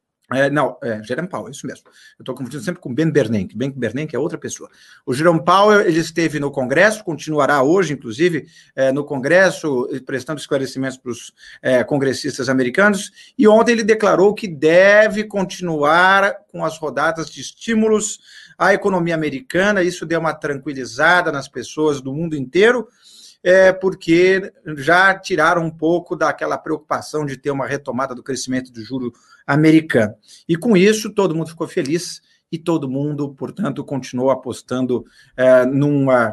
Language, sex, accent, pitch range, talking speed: Portuguese, male, Brazilian, 135-185 Hz, 155 wpm